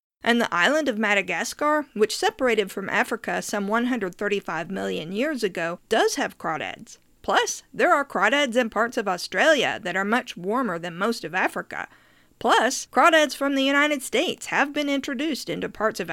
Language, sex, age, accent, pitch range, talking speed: English, female, 50-69, American, 205-280 Hz, 165 wpm